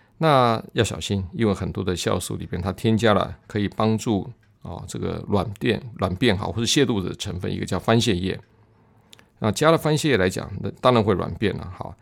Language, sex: Chinese, male